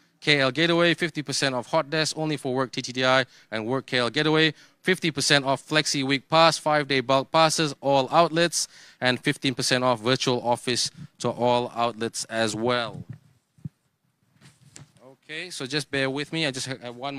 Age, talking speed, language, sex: 20-39, 155 wpm, English, male